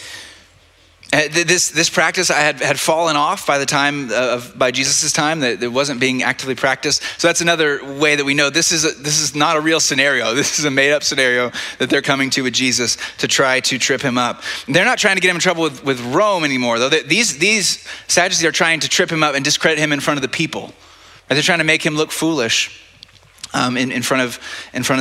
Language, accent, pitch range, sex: English, American, 125-160 Hz, male